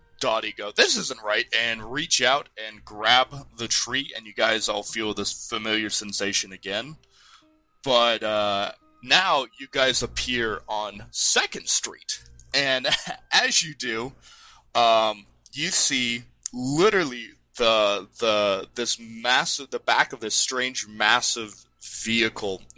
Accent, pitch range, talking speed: American, 100-125 Hz, 130 wpm